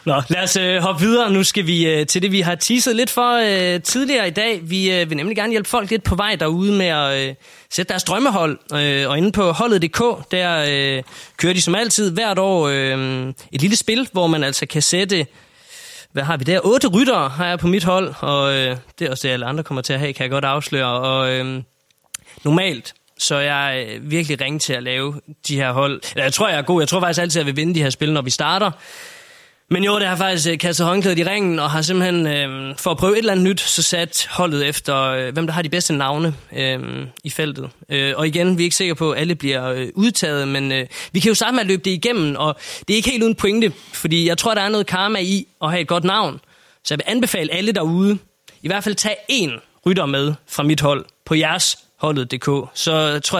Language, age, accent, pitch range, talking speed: Danish, 20-39, native, 140-190 Hz, 240 wpm